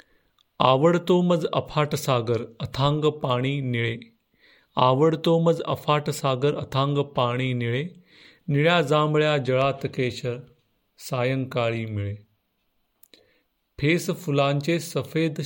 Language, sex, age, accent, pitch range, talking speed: Marathi, male, 40-59, native, 120-150 Hz, 60 wpm